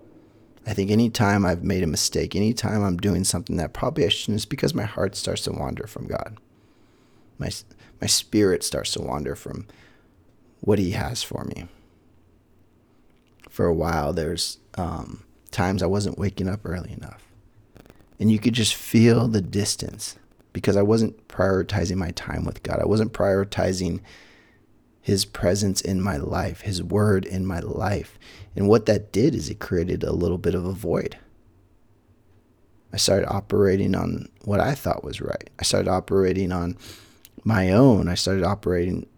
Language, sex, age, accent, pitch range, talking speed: English, male, 30-49, American, 90-110 Hz, 165 wpm